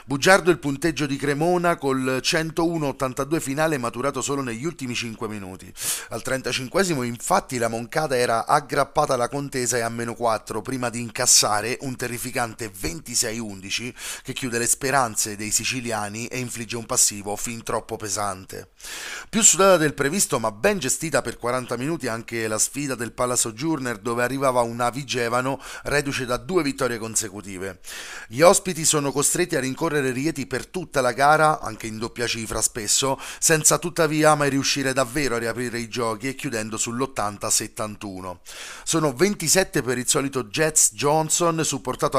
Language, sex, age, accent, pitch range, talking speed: Italian, male, 30-49, native, 115-145 Hz, 150 wpm